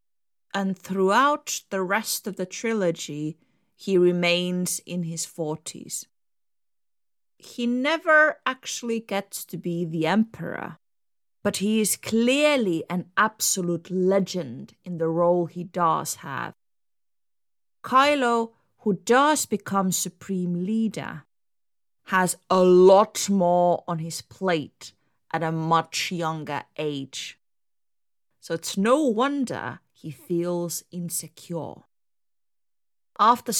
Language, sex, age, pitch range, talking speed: English, female, 30-49, 175-240 Hz, 105 wpm